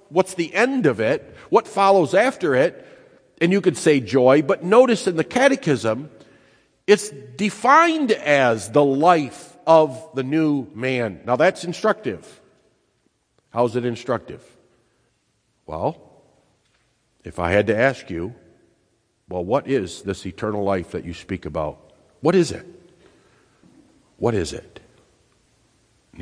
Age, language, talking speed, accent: 50-69, English, 135 wpm, American